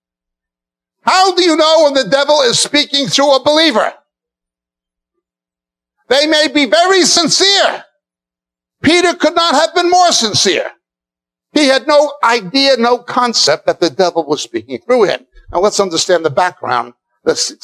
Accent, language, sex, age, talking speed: American, English, male, 60-79, 145 wpm